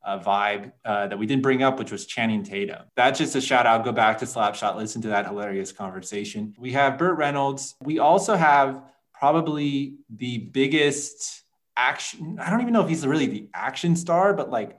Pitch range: 115-160 Hz